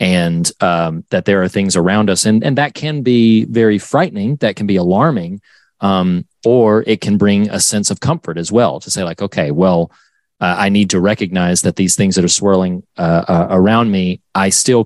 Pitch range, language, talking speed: 90-110 Hz, English, 210 wpm